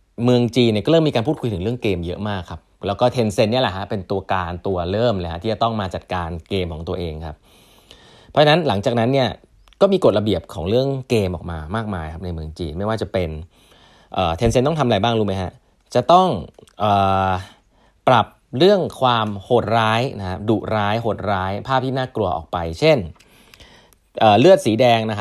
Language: Thai